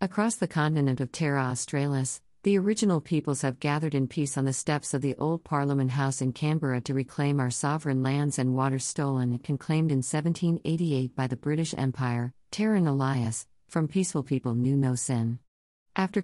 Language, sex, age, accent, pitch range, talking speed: English, female, 50-69, American, 130-155 Hz, 175 wpm